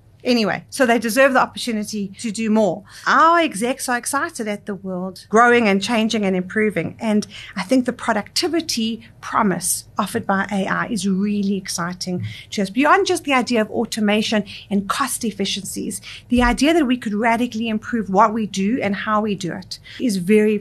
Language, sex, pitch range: English, female, 200-245 Hz